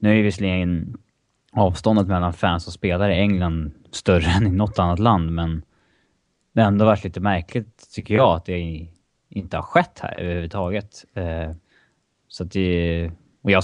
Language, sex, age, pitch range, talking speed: Swedish, male, 20-39, 85-105 Hz, 165 wpm